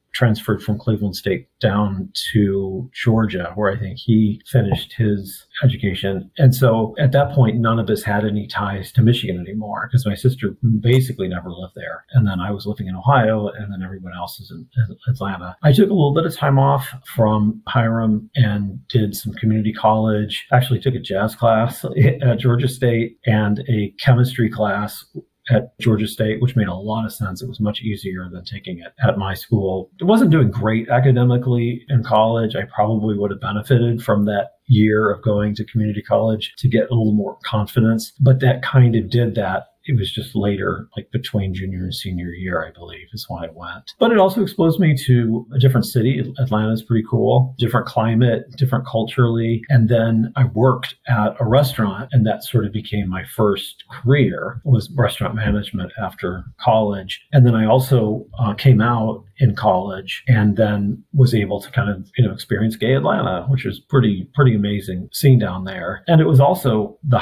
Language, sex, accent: English, male, American